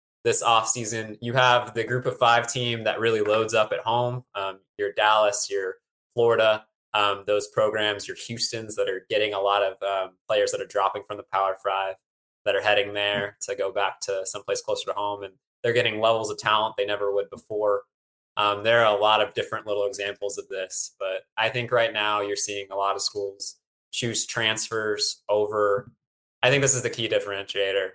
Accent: American